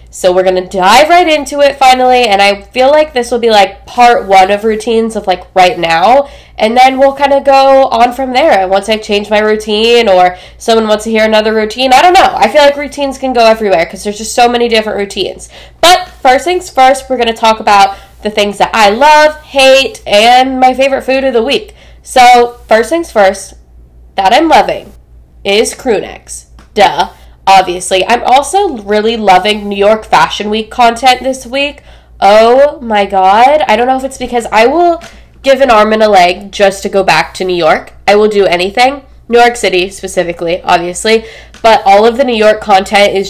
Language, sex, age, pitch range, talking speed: English, female, 10-29, 195-255 Hz, 205 wpm